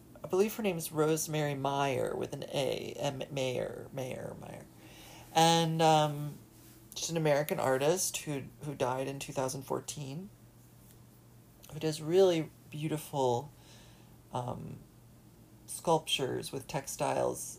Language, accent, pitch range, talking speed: English, American, 130-165 Hz, 115 wpm